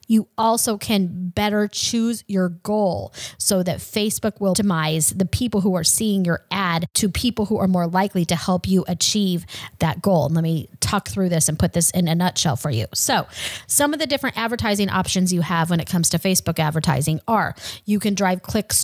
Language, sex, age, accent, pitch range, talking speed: English, female, 30-49, American, 180-215 Hz, 205 wpm